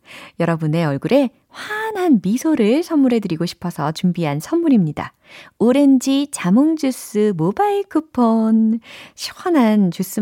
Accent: native